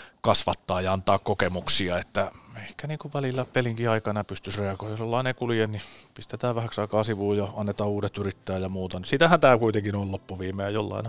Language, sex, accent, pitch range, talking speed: Finnish, male, native, 90-105 Hz, 195 wpm